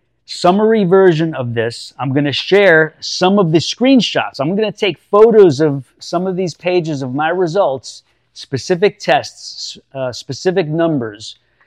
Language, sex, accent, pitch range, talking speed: English, male, American, 125-170 Hz, 155 wpm